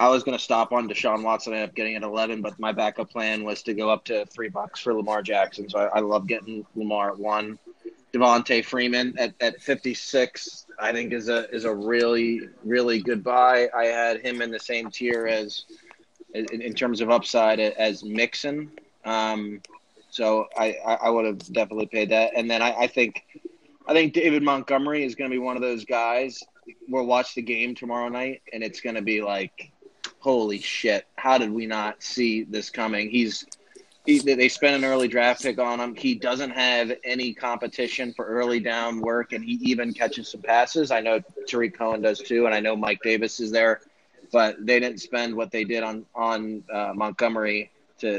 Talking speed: 205 wpm